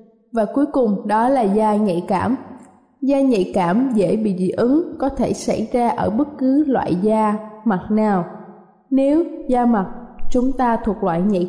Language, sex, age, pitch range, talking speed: Vietnamese, female, 20-39, 195-250 Hz, 180 wpm